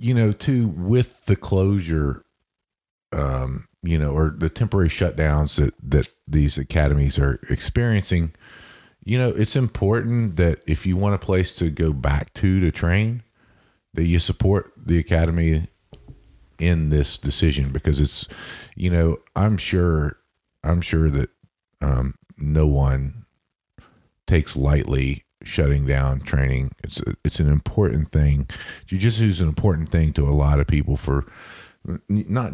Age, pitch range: 40-59, 75-95 Hz